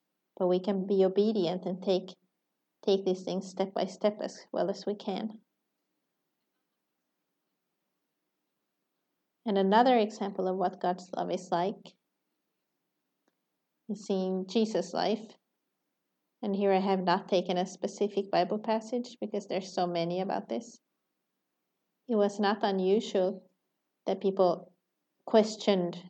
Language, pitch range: Swedish, 190-215 Hz